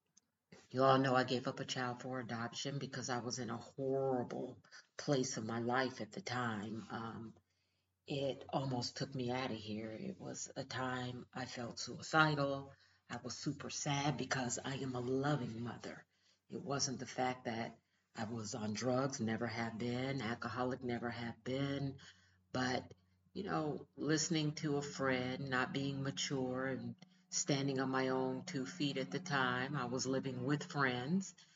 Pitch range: 120-140 Hz